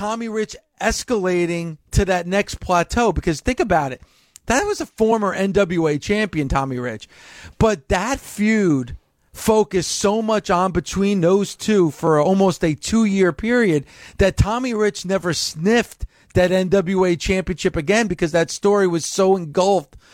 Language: English